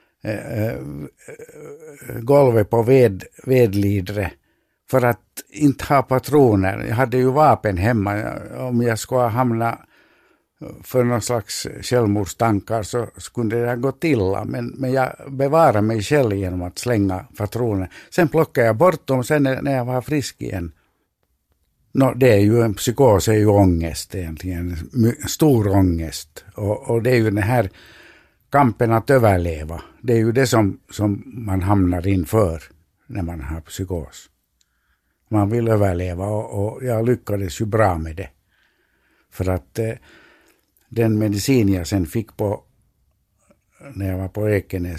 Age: 60-79